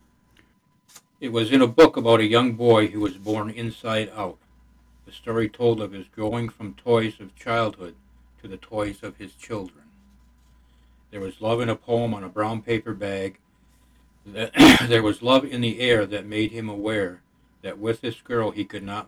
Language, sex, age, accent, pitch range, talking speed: English, male, 60-79, American, 90-115 Hz, 180 wpm